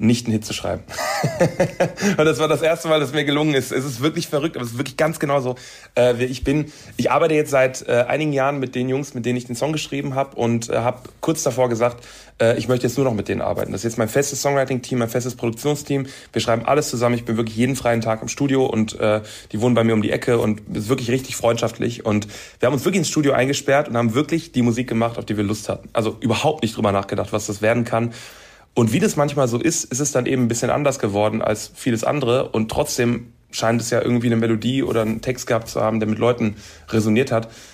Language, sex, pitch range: German, male, 110-135 Hz